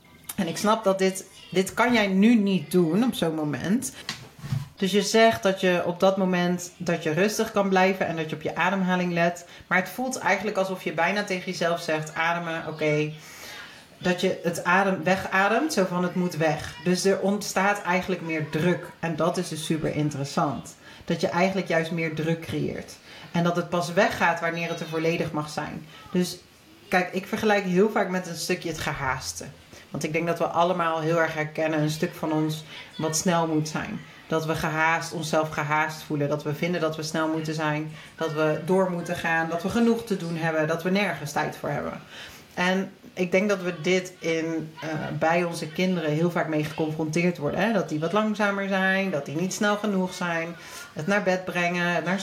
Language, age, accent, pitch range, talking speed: Dutch, 40-59, Dutch, 160-190 Hz, 205 wpm